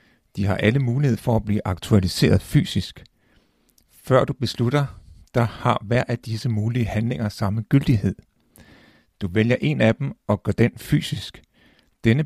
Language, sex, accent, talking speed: Danish, male, native, 150 wpm